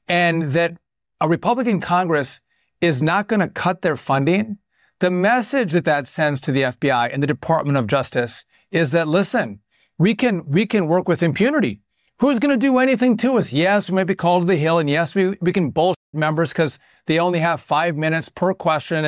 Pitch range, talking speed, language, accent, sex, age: 150-185 Hz, 205 wpm, English, American, male, 40-59